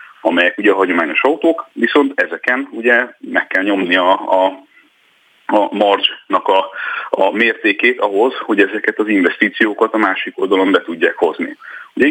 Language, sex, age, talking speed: Hungarian, male, 30-49, 150 wpm